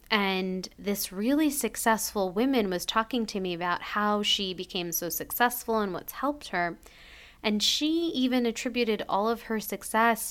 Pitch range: 180-225 Hz